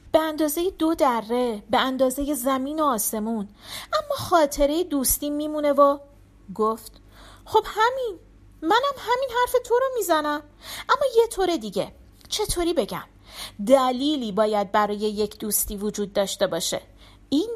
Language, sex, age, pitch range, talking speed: Persian, female, 40-59, 220-320 Hz, 130 wpm